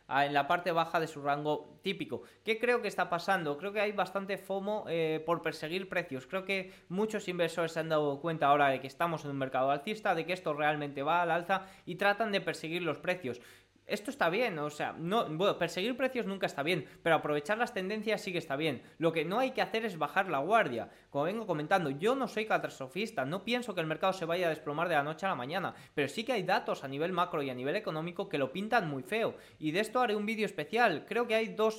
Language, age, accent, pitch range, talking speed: Spanish, 20-39, Spanish, 150-200 Hz, 245 wpm